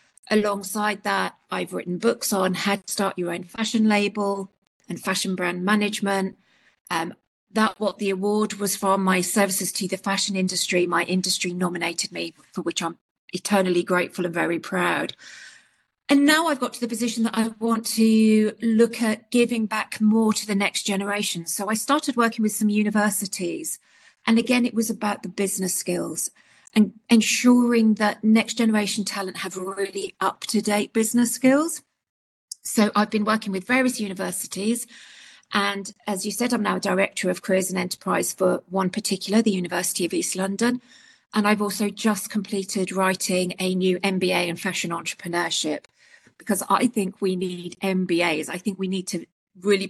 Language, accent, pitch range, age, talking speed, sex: English, British, 185-220 Hz, 40-59, 165 wpm, female